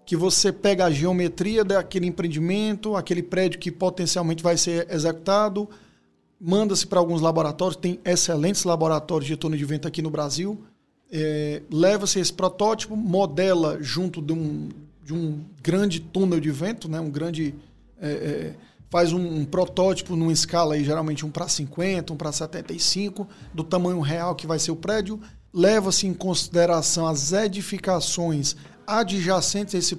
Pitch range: 160-190 Hz